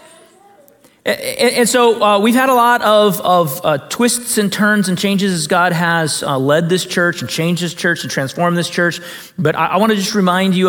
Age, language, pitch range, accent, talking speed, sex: 30-49, English, 130-180 Hz, American, 210 wpm, male